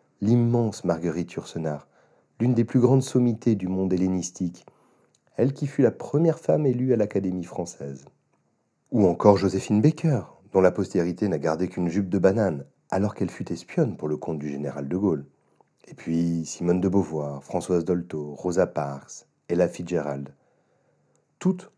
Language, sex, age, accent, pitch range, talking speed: French, male, 40-59, French, 85-125 Hz, 155 wpm